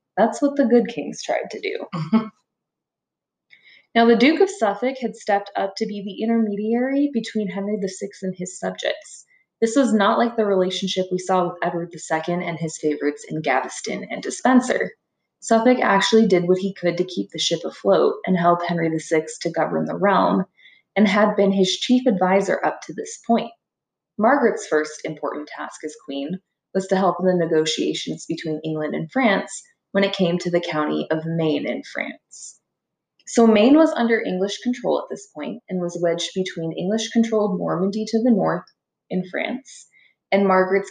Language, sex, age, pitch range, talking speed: English, female, 20-39, 170-220 Hz, 175 wpm